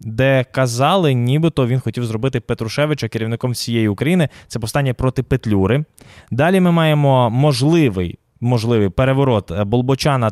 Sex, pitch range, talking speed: male, 115-150 Hz, 120 wpm